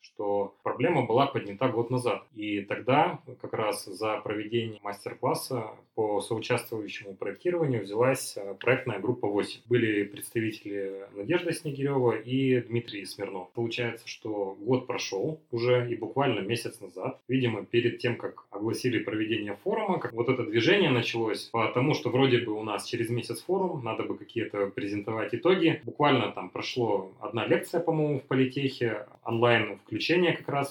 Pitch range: 110-130 Hz